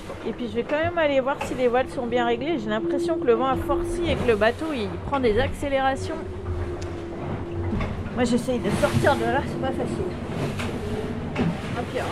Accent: French